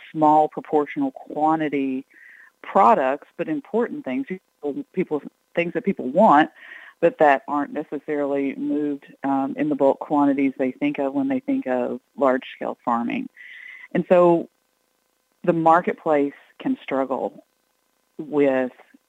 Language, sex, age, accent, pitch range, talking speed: English, female, 40-59, American, 140-190 Hz, 125 wpm